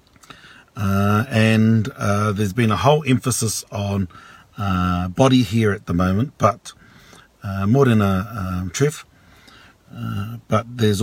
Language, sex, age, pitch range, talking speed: English, male, 50-69, 95-120 Hz, 135 wpm